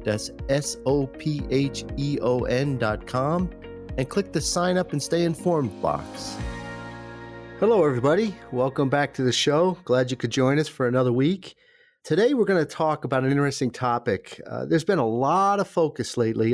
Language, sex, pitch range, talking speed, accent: English, male, 115-145 Hz, 160 wpm, American